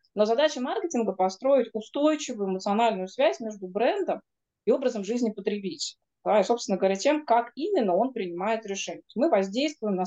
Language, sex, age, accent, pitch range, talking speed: Russian, female, 20-39, native, 185-240 Hz, 150 wpm